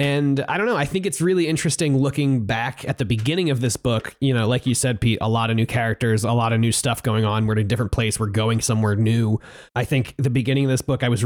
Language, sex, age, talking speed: English, male, 30-49, 285 wpm